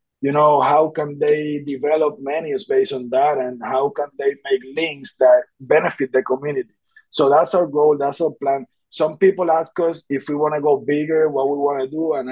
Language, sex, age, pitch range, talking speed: English, male, 30-49, 135-160 Hz, 210 wpm